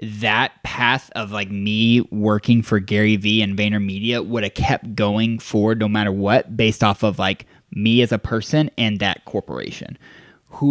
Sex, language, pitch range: male, English, 105-120 Hz